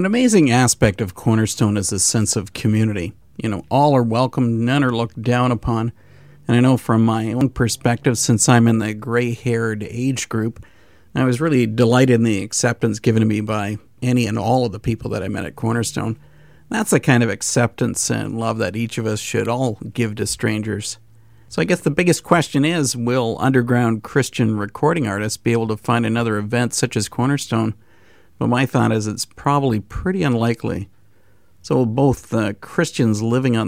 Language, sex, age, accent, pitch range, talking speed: English, male, 50-69, American, 105-125 Hz, 195 wpm